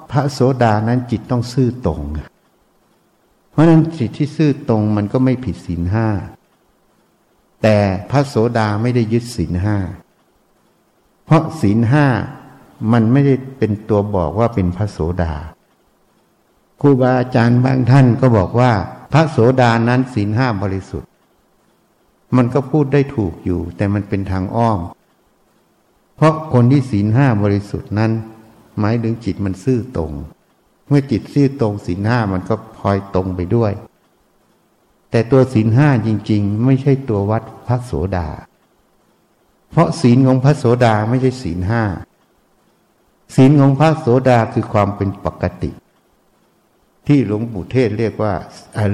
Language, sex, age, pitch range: Thai, male, 60-79, 100-130 Hz